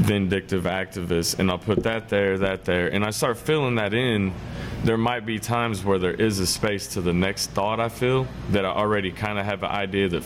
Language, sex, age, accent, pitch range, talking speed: English, male, 20-39, American, 90-110 Hz, 230 wpm